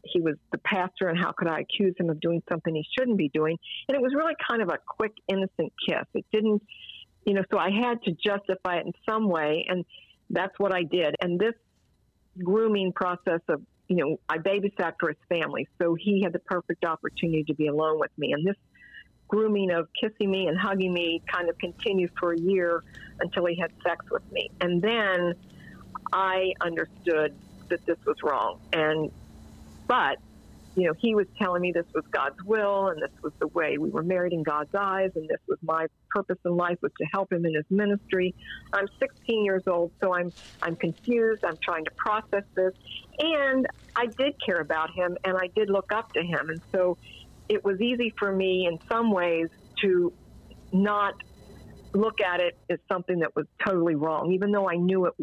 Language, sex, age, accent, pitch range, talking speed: English, female, 50-69, American, 170-205 Hz, 200 wpm